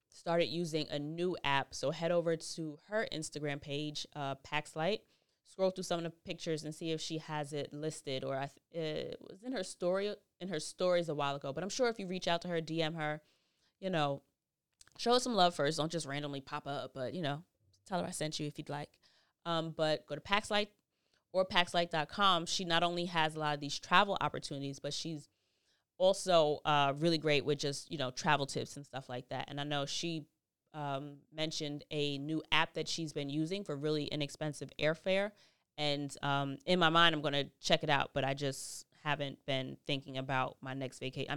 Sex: female